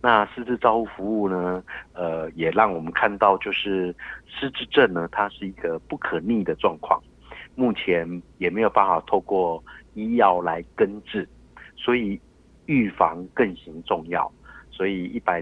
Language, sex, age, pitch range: Chinese, male, 50-69, 85-105 Hz